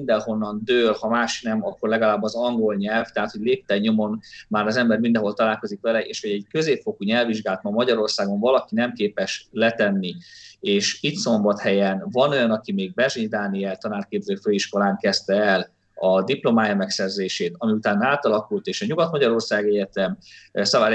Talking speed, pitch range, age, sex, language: 160 wpm, 100-155 Hz, 30-49, male, Hungarian